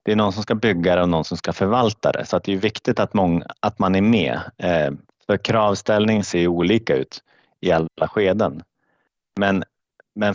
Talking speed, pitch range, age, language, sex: 195 wpm, 85-105 Hz, 30-49, Swedish, male